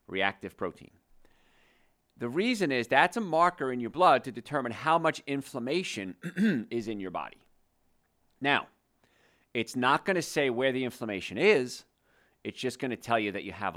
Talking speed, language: 170 wpm, English